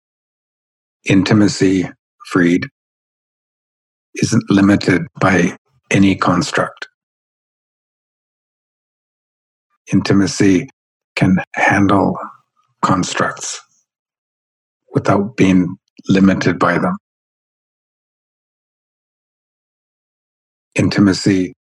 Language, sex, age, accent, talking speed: English, male, 60-79, American, 45 wpm